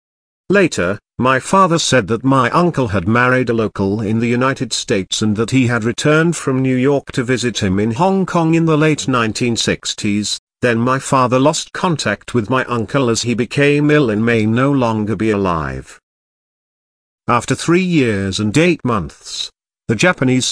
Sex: male